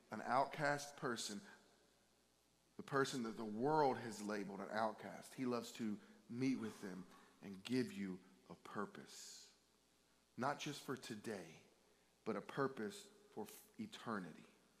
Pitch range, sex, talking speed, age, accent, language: 120-190 Hz, male, 130 wpm, 40-59, American, English